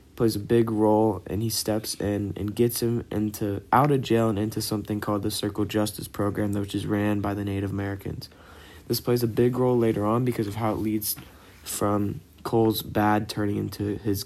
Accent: American